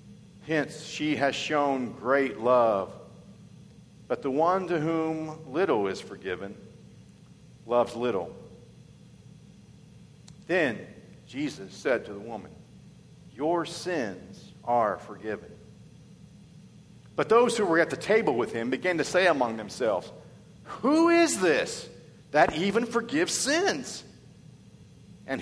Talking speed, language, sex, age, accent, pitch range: 115 wpm, English, male, 50-69, American, 125-155 Hz